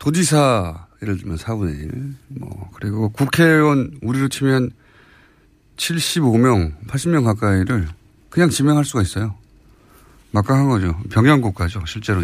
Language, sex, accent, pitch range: Korean, male, native, 100-145 Hz